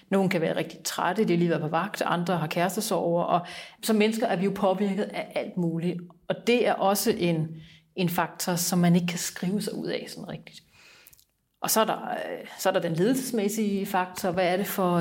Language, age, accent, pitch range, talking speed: Danish, 40-59, native, 175-205 Hz, 220 wpm